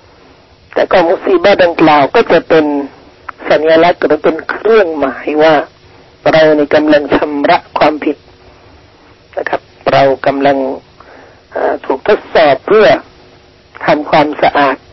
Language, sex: Thai, male